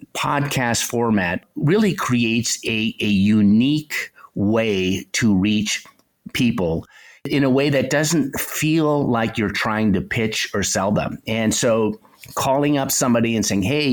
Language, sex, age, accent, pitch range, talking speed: English, male, 50-69, American, 105-135 Hz, 140 wpm